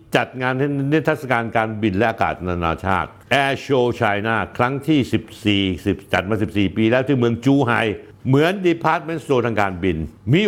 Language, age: Thai, 60-79